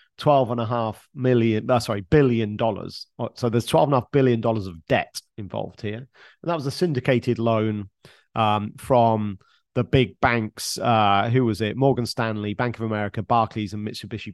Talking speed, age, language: 185 wpm, 40-59, English